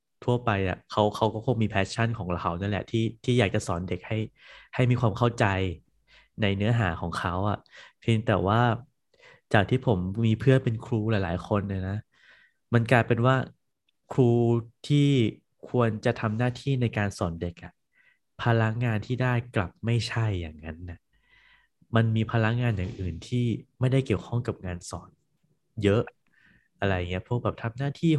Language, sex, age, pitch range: Thai, male, 20-39, 100-125 Hz